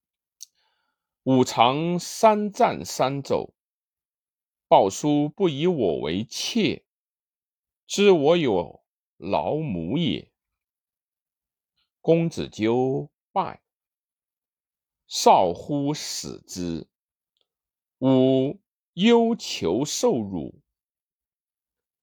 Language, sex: Chinese, male